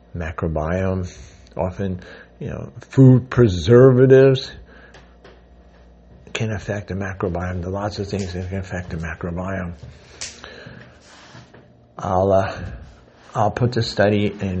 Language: English